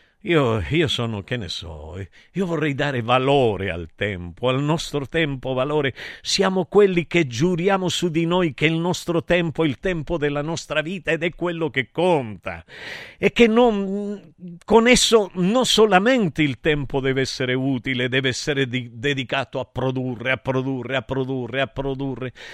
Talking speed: 165 wpm